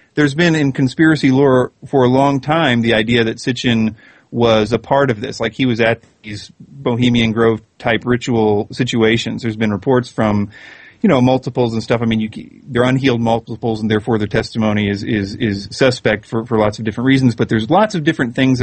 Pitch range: 115-150 Hz